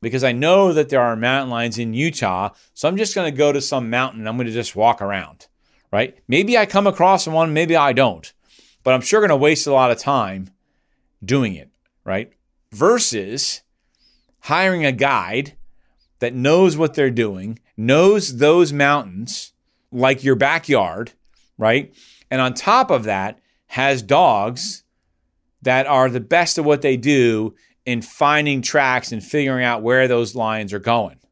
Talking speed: 170 wpm